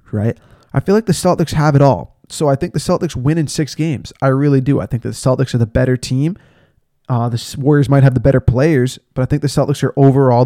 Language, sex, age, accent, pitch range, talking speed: English, male, 20-39, American, 125-150 Hz, 260 wpm